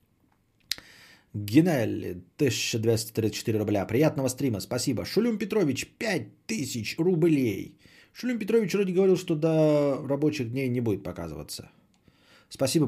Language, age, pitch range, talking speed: Bulgarian, 20-39, 105-145 Hz, 100 wpm